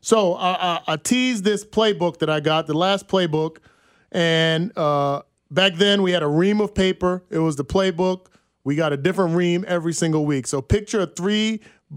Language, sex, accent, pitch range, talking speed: English, male, American, 145-190 Hz, 195 wpm